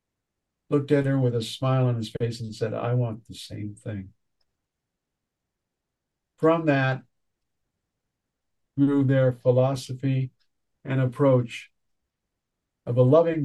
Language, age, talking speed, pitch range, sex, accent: English, 50-69, 115 wpm, 115-145 Hz, male, American